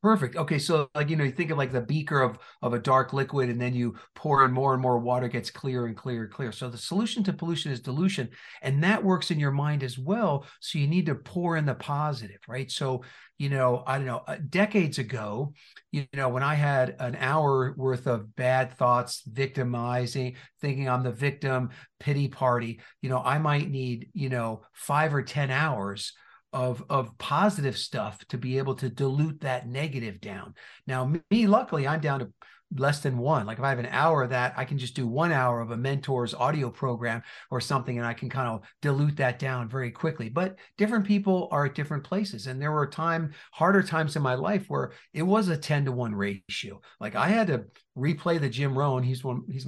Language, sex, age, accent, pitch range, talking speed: English, male, 50-69, American, 125-155 Hz, 215 wpm